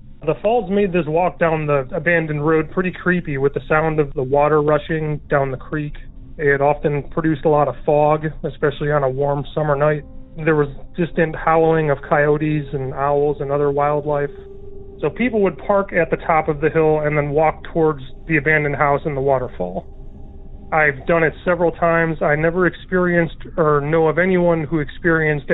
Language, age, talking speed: English, 30-49, 185 wpm